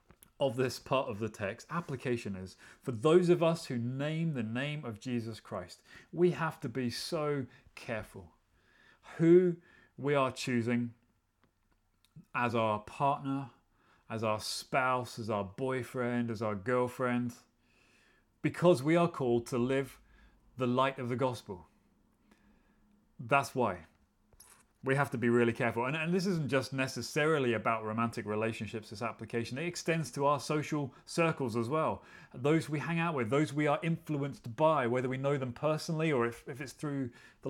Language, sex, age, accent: English, male, 30-49, British